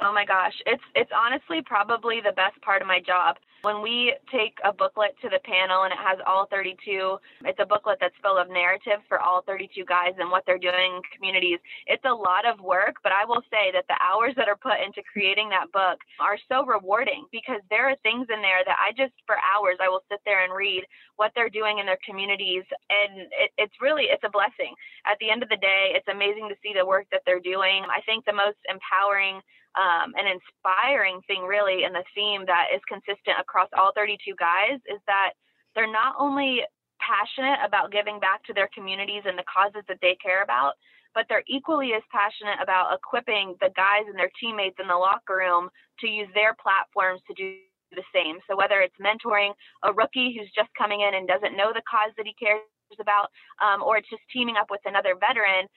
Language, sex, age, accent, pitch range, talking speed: English, female, 20-39, American, 190-225 Hz, 220 wpm